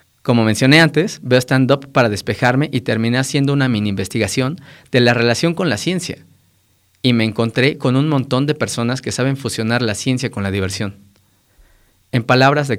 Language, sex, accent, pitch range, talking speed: Spanish, male, Mexican, 105-130 Hz, 175 wpm